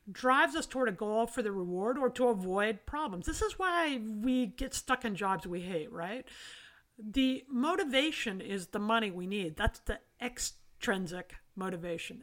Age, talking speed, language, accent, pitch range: 50-69, 165 wpm, English, American, 200-265 Hz